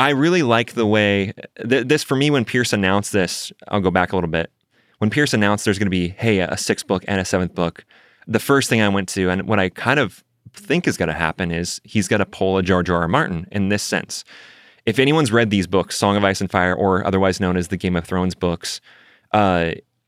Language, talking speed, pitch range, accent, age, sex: English, 250 wpm, 90-115 Hz, American, 20-39, male